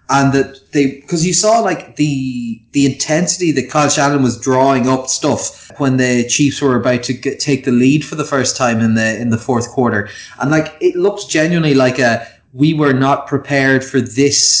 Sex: male